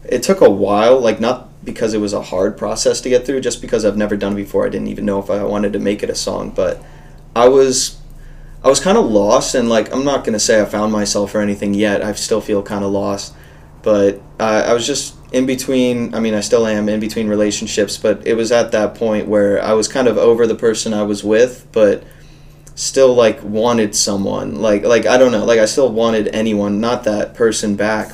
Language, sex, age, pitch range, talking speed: English, male, 20-39, 100-110 Hz, 235 wpm